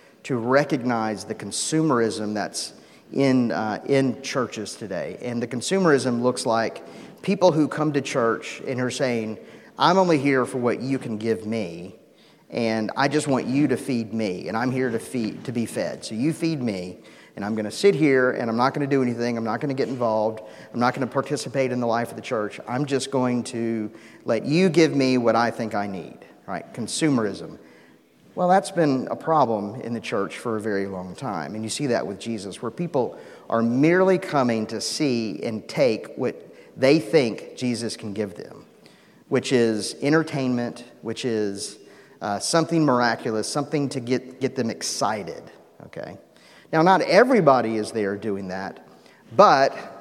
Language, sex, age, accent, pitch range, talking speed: English, male, 40-59, American, 110-135 Hz, 185 wpm